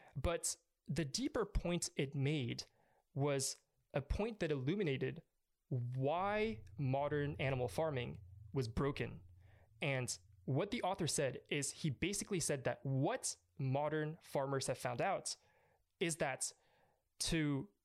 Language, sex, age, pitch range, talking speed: English, male, 20-39, 130-160 Hz, 120 wpm